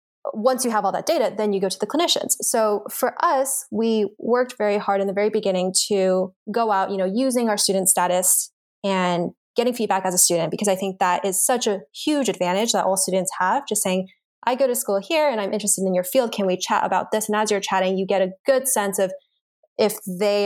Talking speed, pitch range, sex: 240 wpm, 185-215 Hz, female